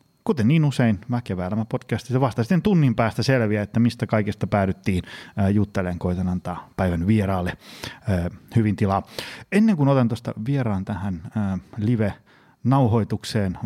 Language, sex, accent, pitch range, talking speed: Finnish, male, native, 100-140 Hz, 125 wpm